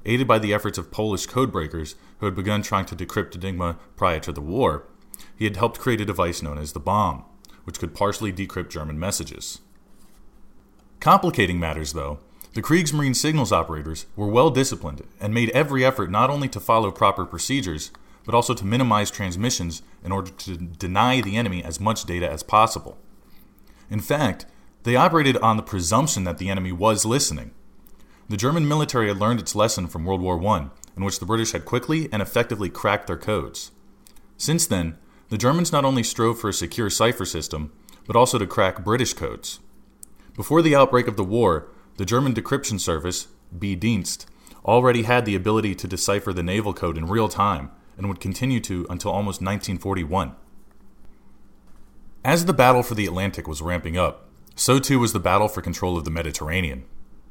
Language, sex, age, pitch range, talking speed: English, male, 30-49, 90-120 Hz, 180 wpm